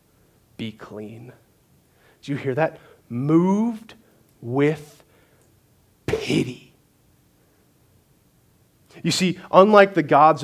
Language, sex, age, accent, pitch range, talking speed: English, male, 30-49, American, 140-205 Hz, 80 wpm